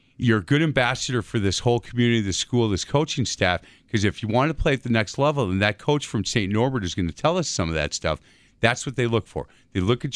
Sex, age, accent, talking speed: male, 50-69, American, 270 wpm